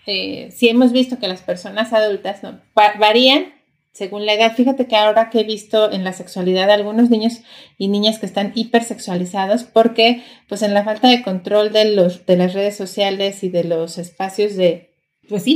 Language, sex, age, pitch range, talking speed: Spanish, female, 30-49, 185-220 Hz, 195 wpm